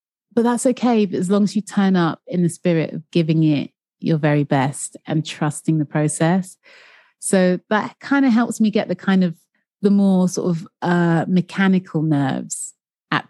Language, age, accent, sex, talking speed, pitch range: English, 30-49, British, female, 180 wpm, 155-195 Hz